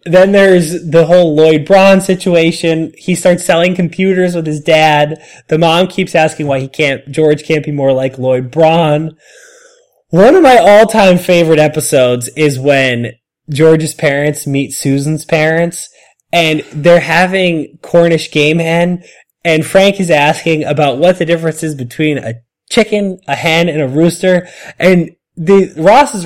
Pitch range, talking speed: 145-180 Hz, 155 wpm